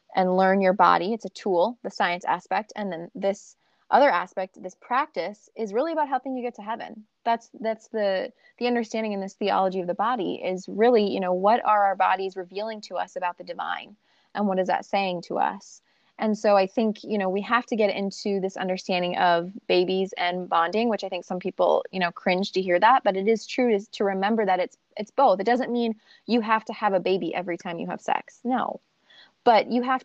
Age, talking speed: 20-39, 230 wpm